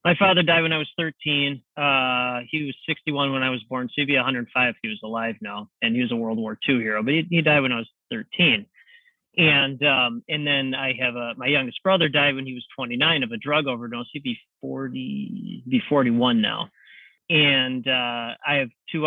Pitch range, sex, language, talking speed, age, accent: 125-165 Hz, male, English, 230 wpm, 30-49, American